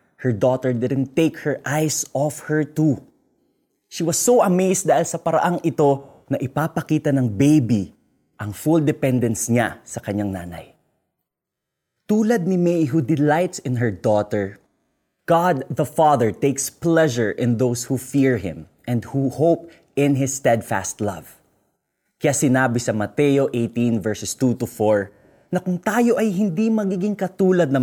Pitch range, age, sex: 120-165 Hz, 20-39, male